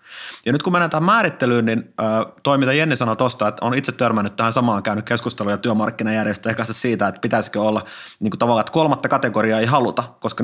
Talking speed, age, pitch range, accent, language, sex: 195 wpm, 30-49, 110-145 Hz, native, Finnish, male